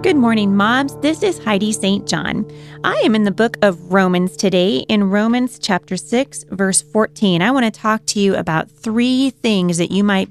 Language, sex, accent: English, female, American